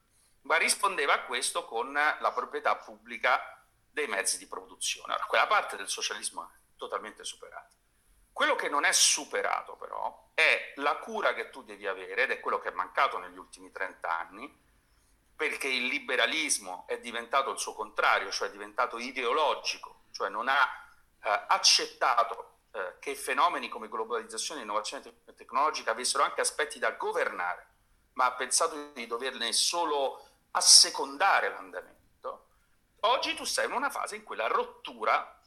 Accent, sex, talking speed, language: native, male, 155 wpm, Italian